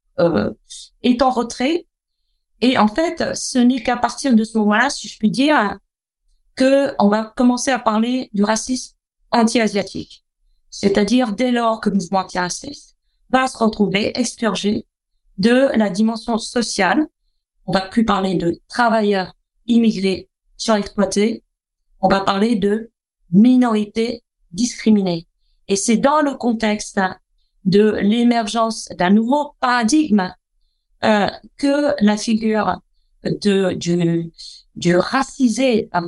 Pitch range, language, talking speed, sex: 195-245 Hz, French, 130 wpm, female